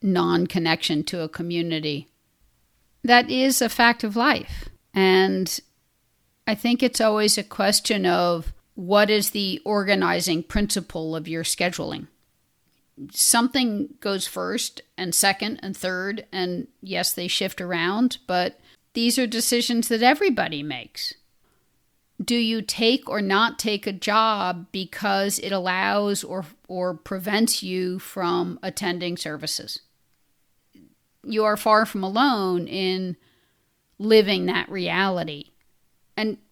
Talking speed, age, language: 120 wpm, 50-69, English